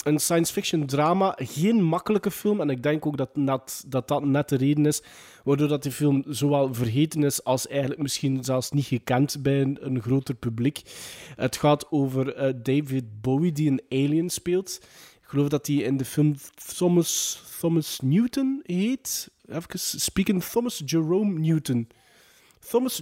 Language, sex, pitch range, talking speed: Dutch, male, 135-165 Hz, 155 wpm